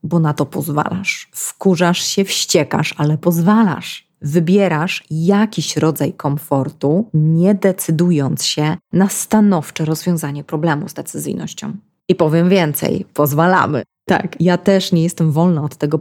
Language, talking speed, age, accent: Polish, 125 wpm, 20-39, native